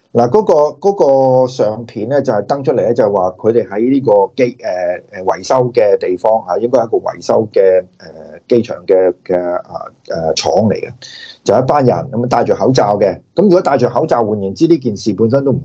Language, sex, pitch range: Chinese, male, 115-170 Hz